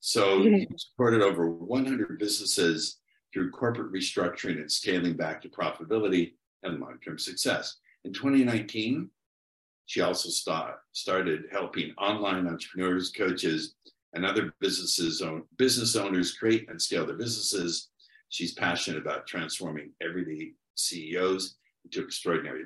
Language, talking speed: English, 120 wpm